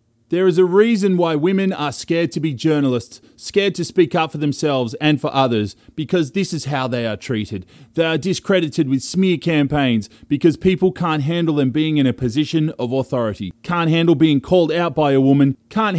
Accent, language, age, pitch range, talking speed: Australian, English, 30-49, 145-190 Hz, 200 wpm